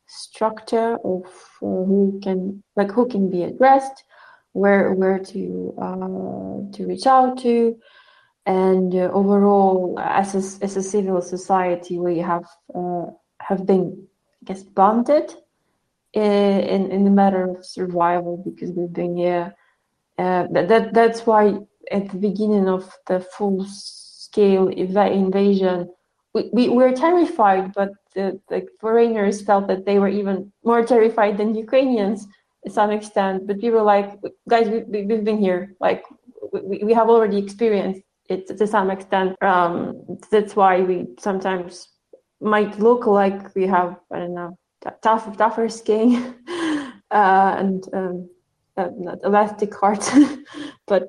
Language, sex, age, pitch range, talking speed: English, female, 20-39, 185-225 Hz, 145 wpm